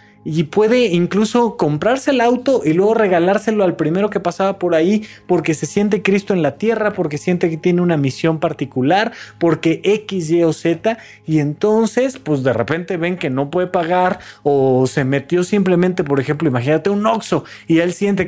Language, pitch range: Spanish, 145-190 Hz